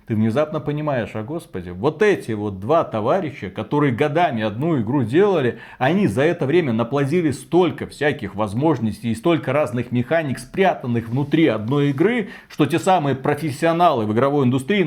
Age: 30-49